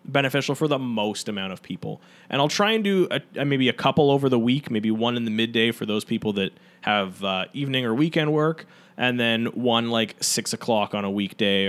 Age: 20-39